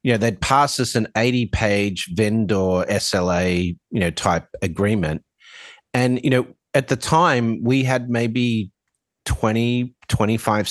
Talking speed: 135 wpm